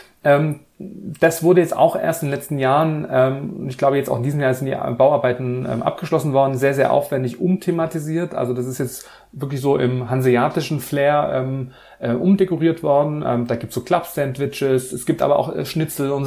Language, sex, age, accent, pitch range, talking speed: German, male, 30-49, German, 125-155 Hz, 175 wpm